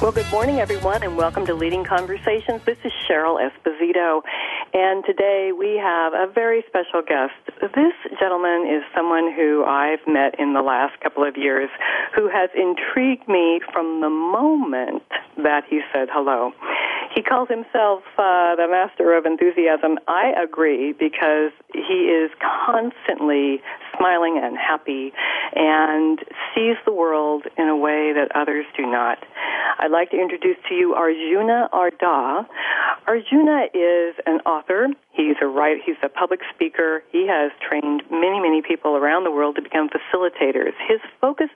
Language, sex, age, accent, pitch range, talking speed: English, female, 50-69, American, 150-205 Hz, 155 wpm